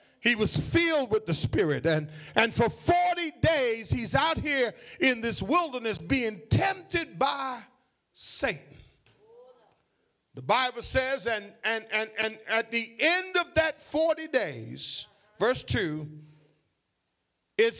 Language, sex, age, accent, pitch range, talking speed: English, male, 40-59, American, 195-300 Hz, 130 wpm